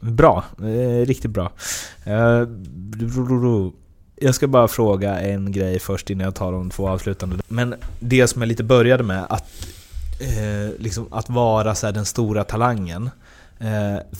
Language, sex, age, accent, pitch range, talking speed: Swedish, male, 20-39, native, 95-115 Hz, 160 wpm